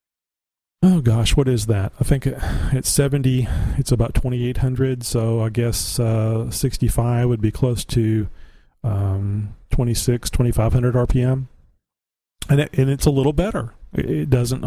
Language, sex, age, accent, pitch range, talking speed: English, male, 40-59, American, 110-130 Hz, 165 wpm